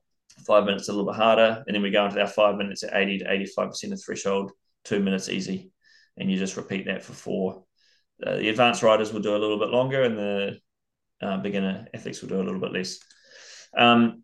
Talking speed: 220 wpm